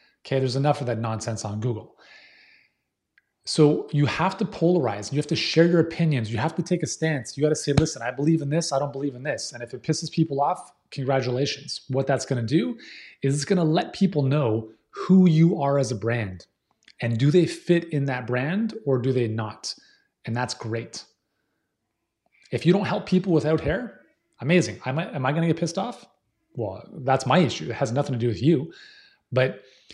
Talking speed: 215 wpm